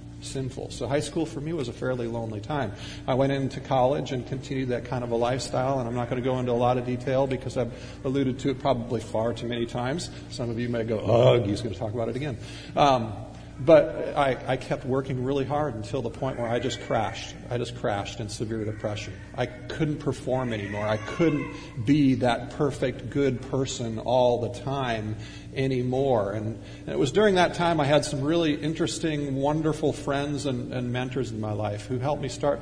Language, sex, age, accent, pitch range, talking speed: English, male, 40-59, American, 120-145 Hz, 210 wpm